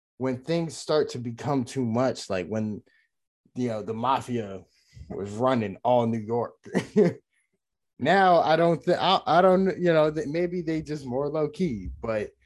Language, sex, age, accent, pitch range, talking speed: English, male, 20-39, American, 110-140 Hz, 165 wpm